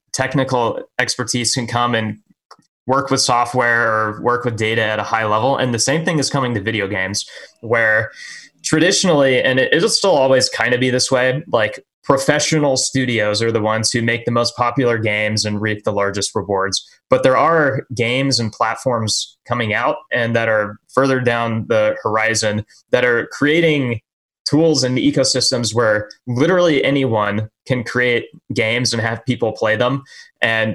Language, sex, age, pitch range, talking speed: English, male, 20-39, 110-130 Hz, 170 wpm